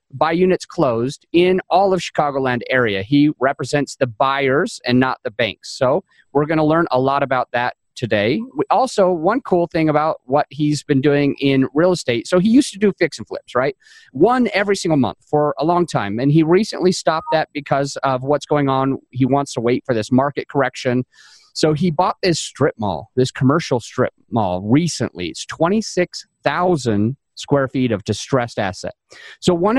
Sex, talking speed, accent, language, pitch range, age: male, 190 wpm, American, English, 135-175 Hz, 30-49